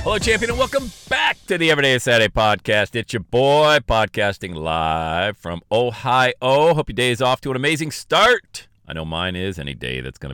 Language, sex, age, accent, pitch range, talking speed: English, male, 40-59, American, 85-140 Hz, 195 wpm